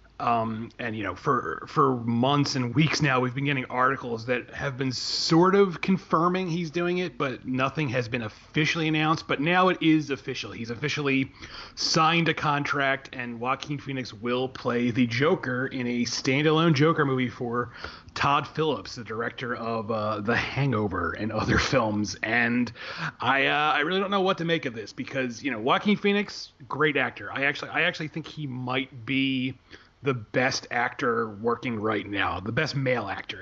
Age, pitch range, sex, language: 30-49, 120-155 Hz, male, English